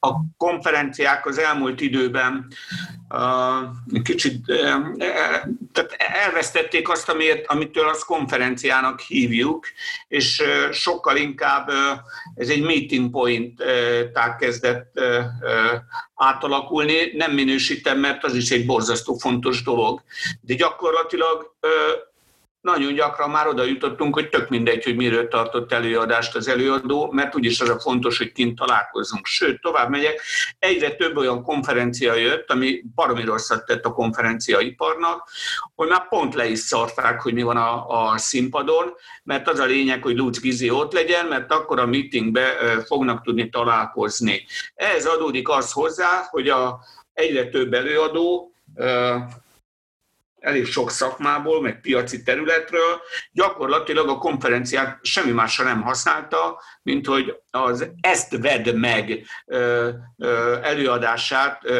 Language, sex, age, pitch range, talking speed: Hungarian, male, 60-79, 120-160 Hz, 120 wpm